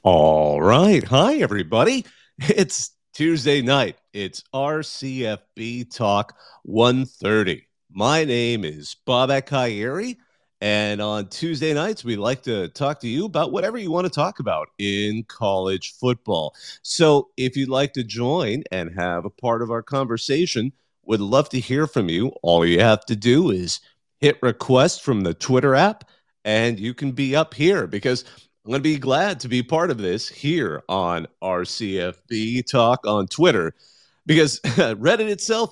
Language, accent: English, American